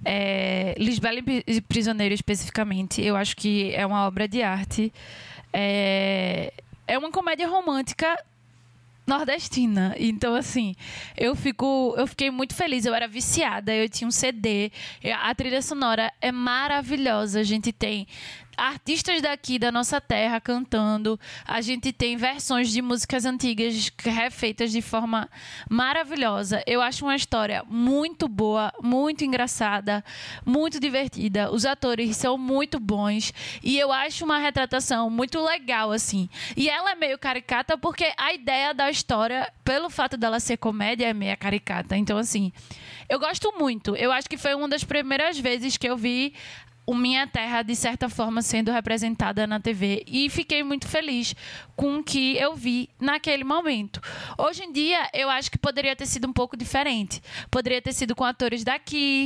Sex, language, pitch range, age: female, Portuguese, 220-275 Hz, 20-39